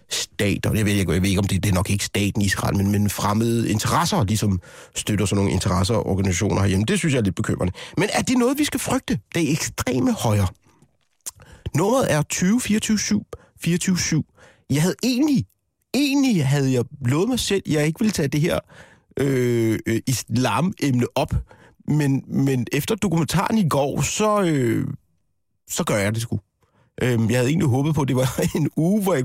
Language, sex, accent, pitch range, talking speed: Danish, male, native, 110-160 Hz, 195 wpm